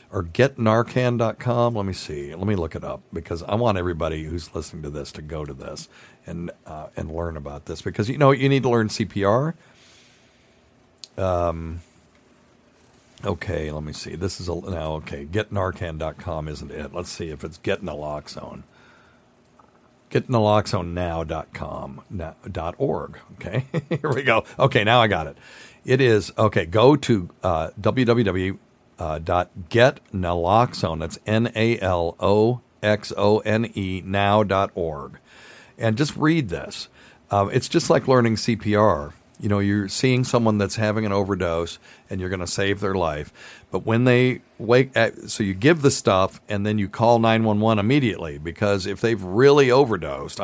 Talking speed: 150 wpm